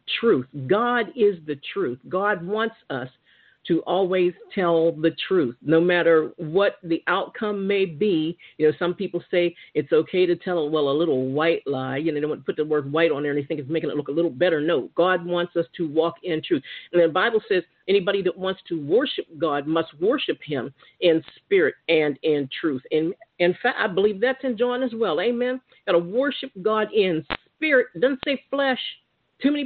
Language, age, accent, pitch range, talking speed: English, 50-69, American, 165-235 Hz, 210 wpm